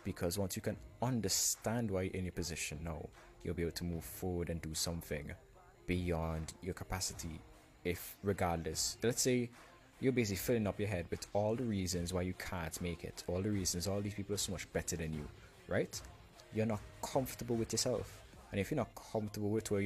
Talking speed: 200 wpm